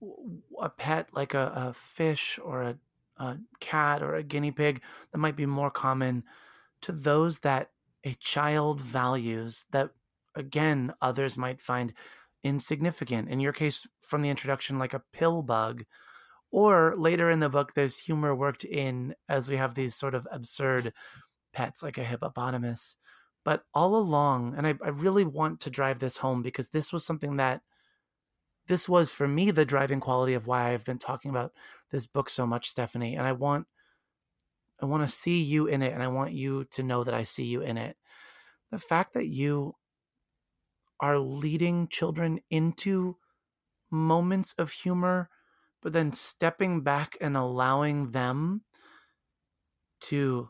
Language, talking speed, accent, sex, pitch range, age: English, 165 wpm, American, male, 130-160 Hz, 30-49